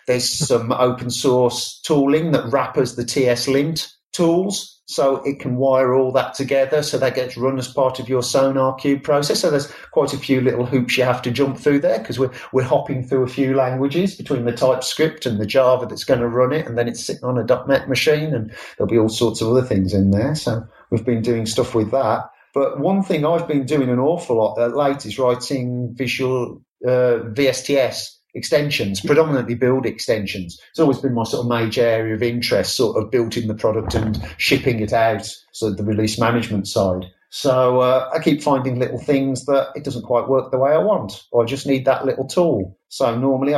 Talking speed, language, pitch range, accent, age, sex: 215 wpm, English, 120-140 Hz, British, 40-59, male